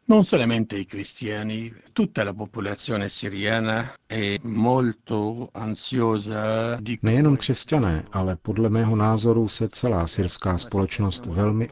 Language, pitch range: Czech, 95-110 Hz